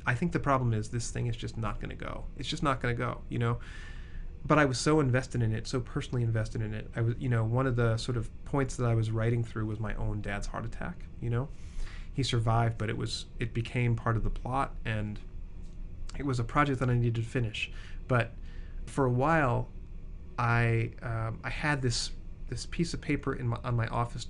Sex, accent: male, American